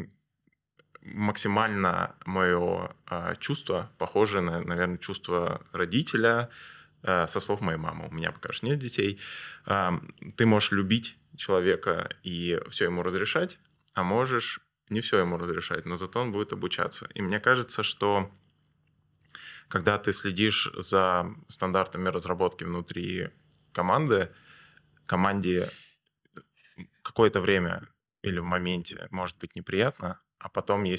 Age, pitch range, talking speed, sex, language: 20-39, 90-105 Hz, 120 wpm, male, Russian